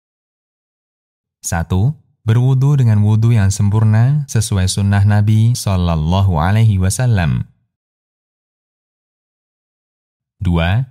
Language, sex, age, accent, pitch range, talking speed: Indonesian, male, 20-39, native, 95-125 Hz, 65 wpm